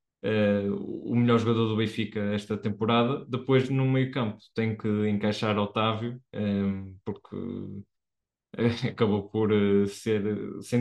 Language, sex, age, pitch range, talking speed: Portuguese, male, 20-39, 105-115 Hz, 110 wpm